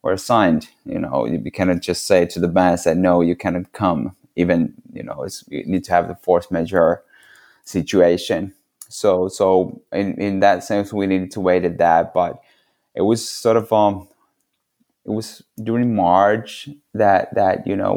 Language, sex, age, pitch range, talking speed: English, male, 20-39, 85-100 Hz, 185 wpm